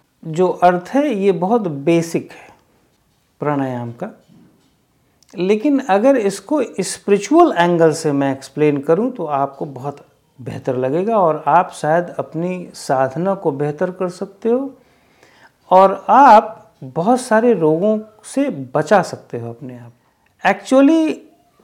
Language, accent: Hindi, native